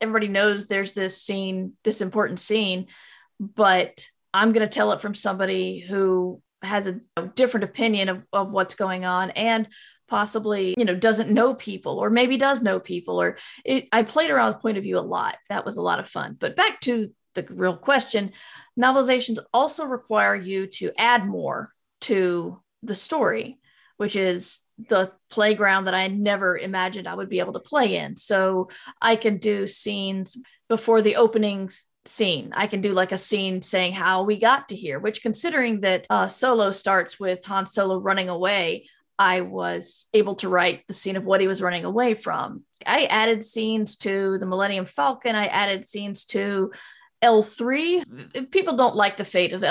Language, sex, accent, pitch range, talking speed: English, female, American, 190-225 Hz, 180 wpm